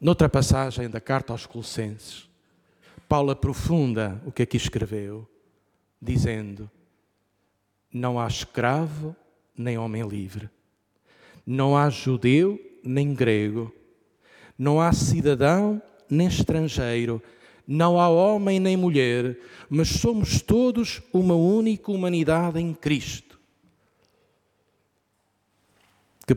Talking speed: 100 wpm